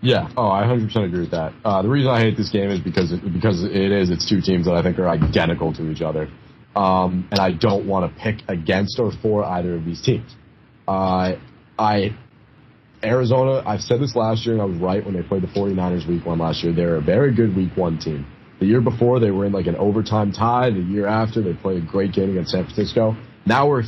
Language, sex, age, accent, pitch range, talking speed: English, male, 30-49, American, 90-110 Hz, 245 wpm